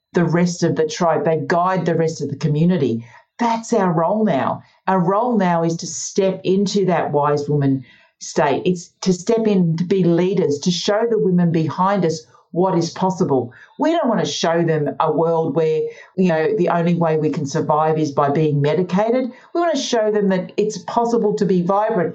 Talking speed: 205 wpm